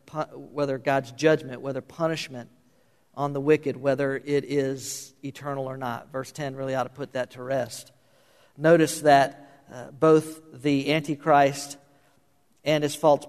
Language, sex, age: English, male, 50-69